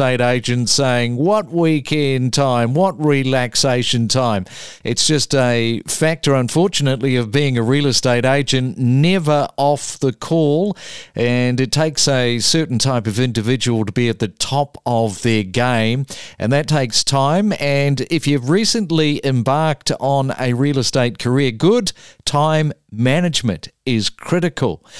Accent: Australian